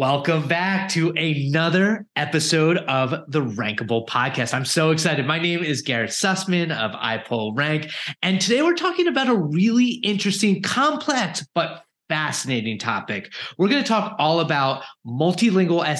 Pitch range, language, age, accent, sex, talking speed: 135-190 Hz, English, 20-39, American, male, 145 wpm